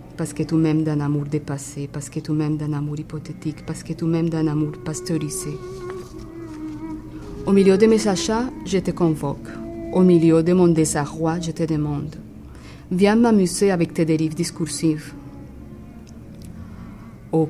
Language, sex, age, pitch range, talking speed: French, female, 40-59, 145-165 Hz, 150 wpm